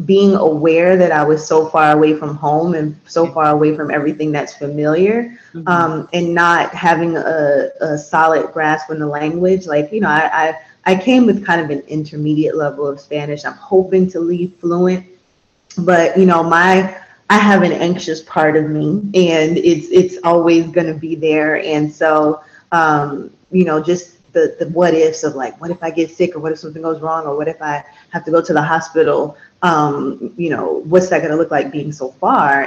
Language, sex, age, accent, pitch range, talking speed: English, female, 20-39, American, 150-180 Hz, 205 wpm